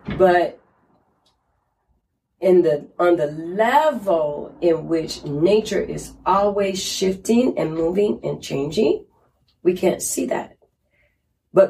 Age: 40-59